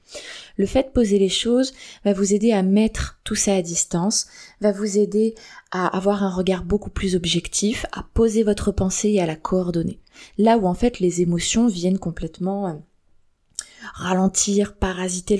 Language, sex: French, female